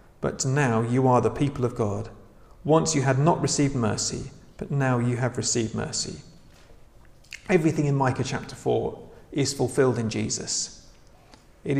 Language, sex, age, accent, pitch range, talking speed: English, male, 40-59, British, 115-135 Hz, 155 wpm